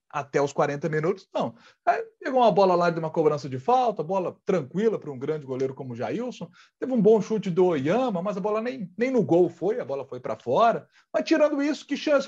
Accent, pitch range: Brazilian, 165-245 Hz